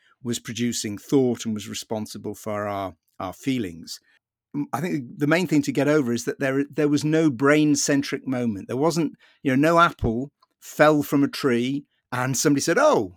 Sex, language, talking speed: male, English, 180 wpm